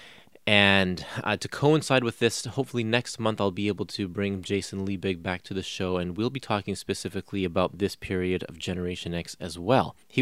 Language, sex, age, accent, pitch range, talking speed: English, male, 30-49, American, 95-120 Hz, 200 wpm